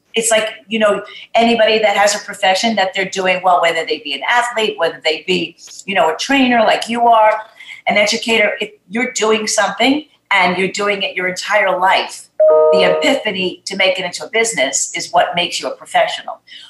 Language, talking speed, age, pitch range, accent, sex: English, 200 wpm, 50-69, 185-225 Hz, American, female